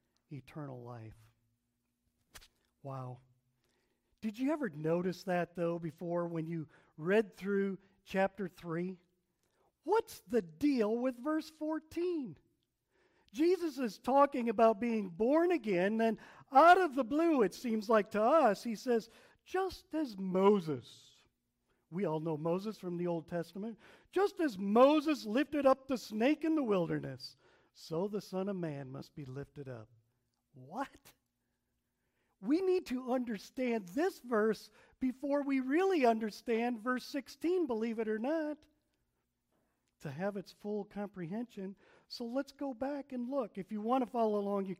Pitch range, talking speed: 165-250 Hz, 140 wpm